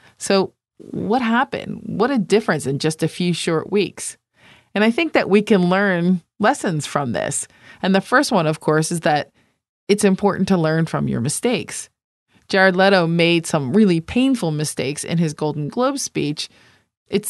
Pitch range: 160-210 Hz